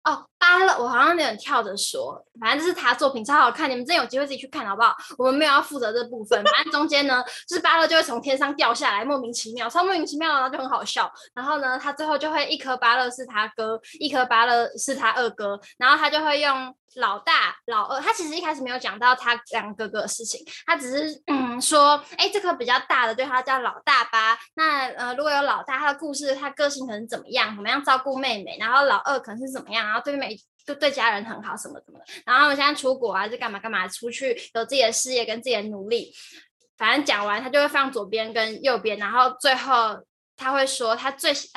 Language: Chinese